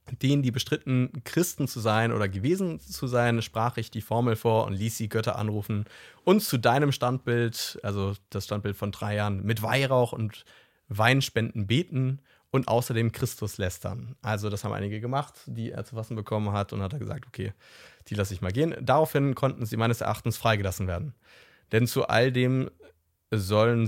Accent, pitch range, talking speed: German, 110-135 Hz, 180 wpm